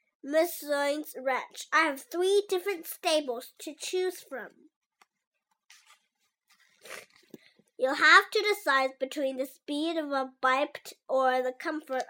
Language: Chinese